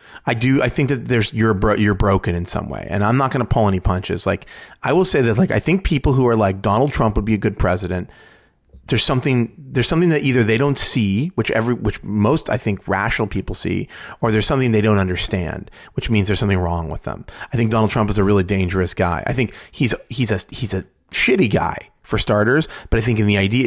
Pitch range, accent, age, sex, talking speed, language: 95-120 Hz, American, 30-49, male, 245 wpm, English